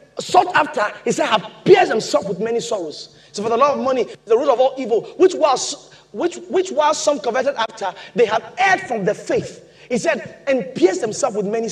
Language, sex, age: English, male, 30-49